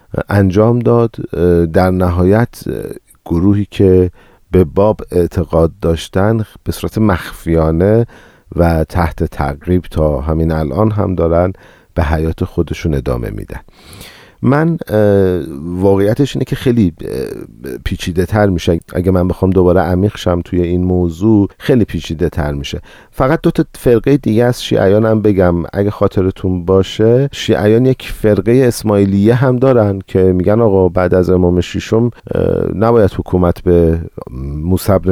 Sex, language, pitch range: male, Persian, 85-110 Hz